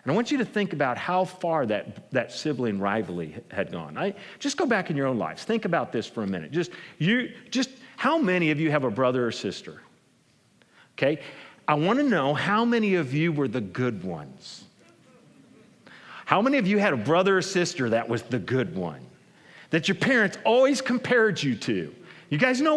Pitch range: 185-290 Hz